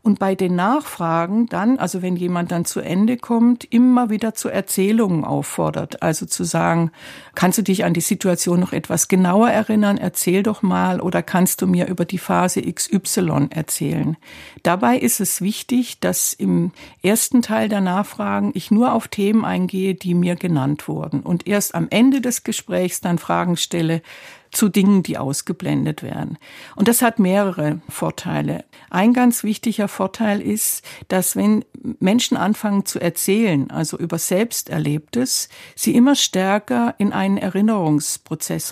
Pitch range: 175-220 Hz